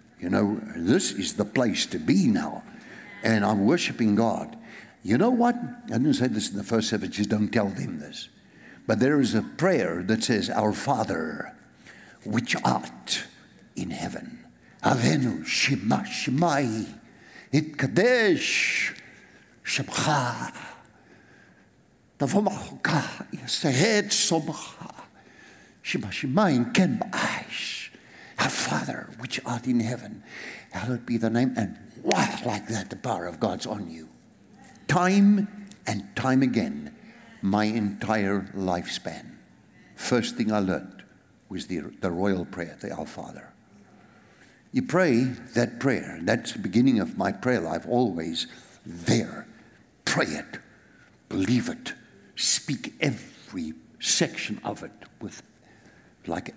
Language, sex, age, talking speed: English, male, 60-79, 120 wpm